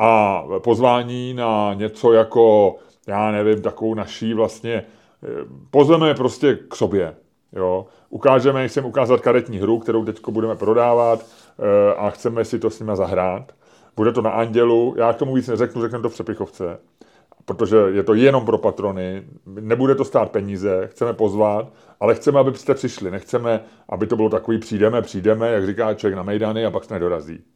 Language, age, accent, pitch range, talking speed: Czech, 30-49, native, 100-120 Hz, 170 wpm